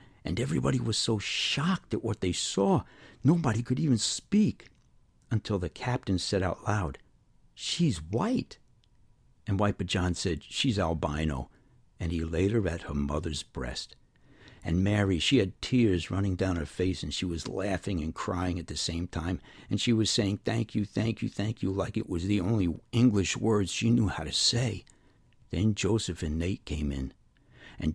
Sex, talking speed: male, 180 wpm